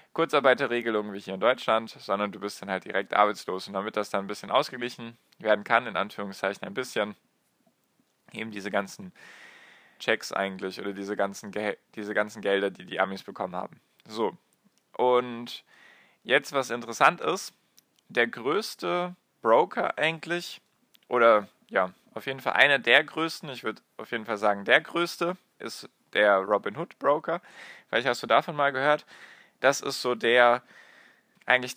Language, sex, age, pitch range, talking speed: German, male, 10-29, 100-130 Hz, 160 wpm